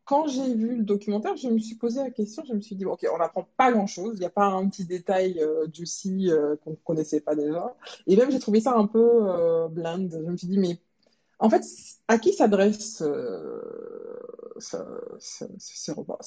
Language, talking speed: French, 225 wpm